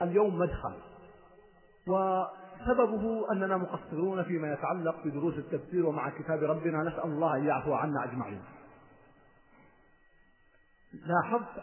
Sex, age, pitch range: male, 40-59, 150-250 Hz